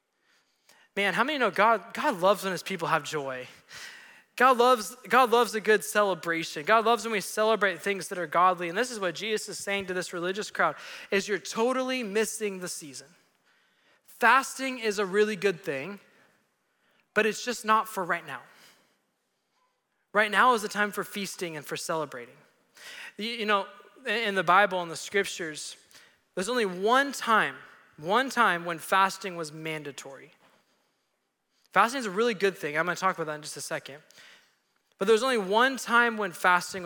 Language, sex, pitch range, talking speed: English, male, 175-220 Hz, 180 wpm